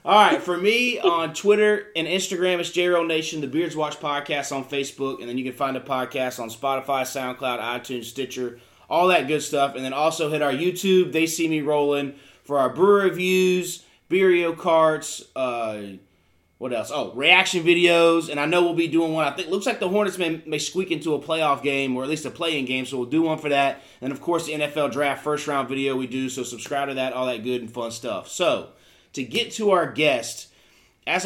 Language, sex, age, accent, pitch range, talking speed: English, male, 30-49, American, 135-185 Hz, 225 wpm